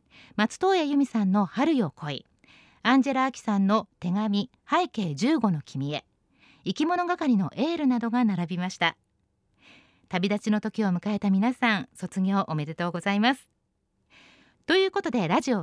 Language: Japanese